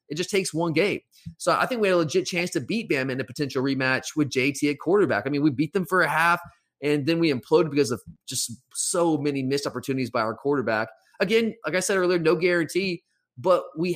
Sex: male